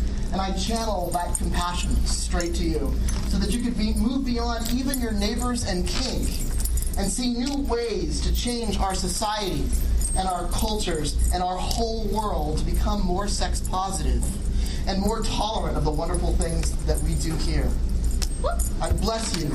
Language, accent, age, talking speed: English, American, 30-49, 165 wpm